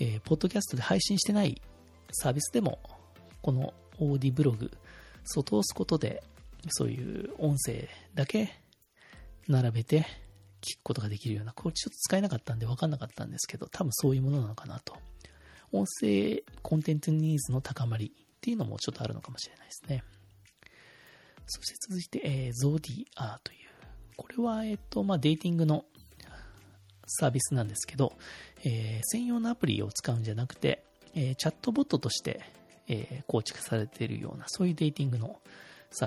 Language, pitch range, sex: Japanese, 110-155 Hz, male